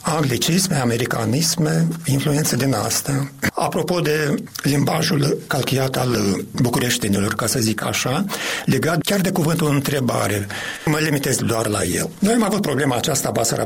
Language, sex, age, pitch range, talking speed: Romanian, male, 50-69, 130-180 Hz, 135 wpm